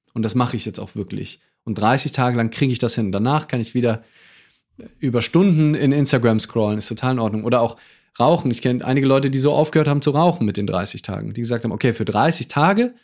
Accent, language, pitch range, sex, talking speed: German, German, 115-150 Hz, male, 240 wpm